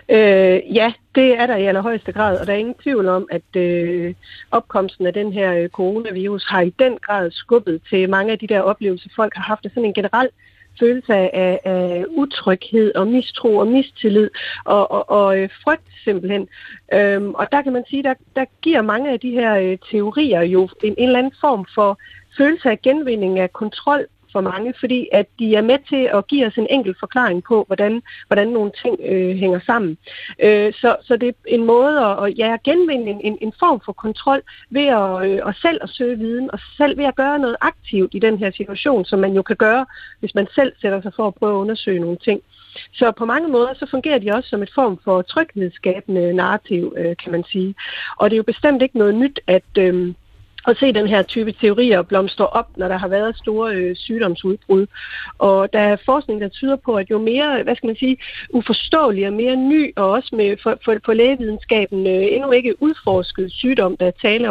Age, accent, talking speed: 40-59, native, 205 wpm